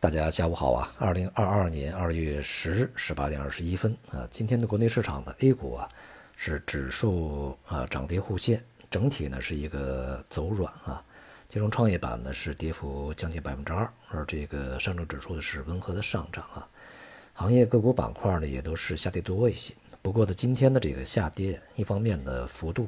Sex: male